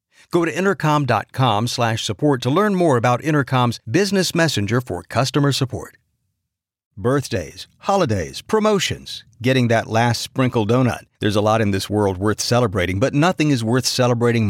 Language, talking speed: English, 145 wpm